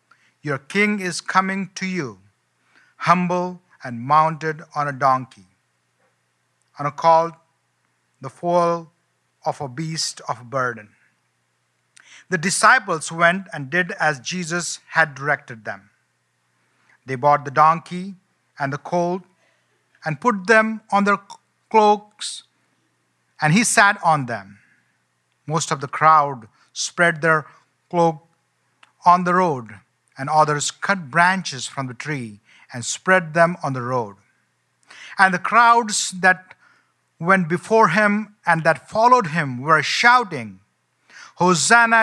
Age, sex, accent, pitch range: 50-69, male, Indian, 130-185 Hz